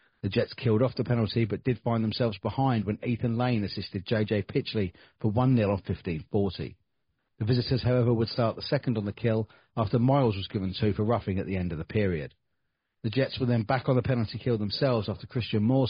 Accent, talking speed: British, 220 wpm